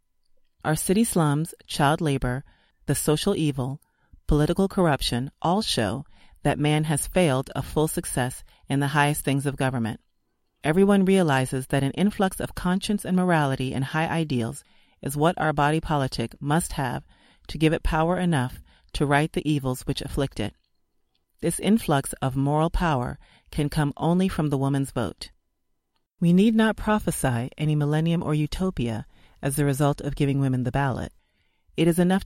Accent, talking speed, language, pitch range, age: American, 160 wpm, English, 135-175 Hz, 40-59